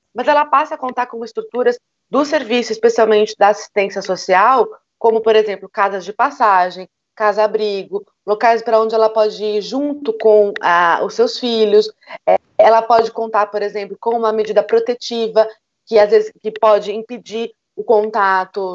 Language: Portuguese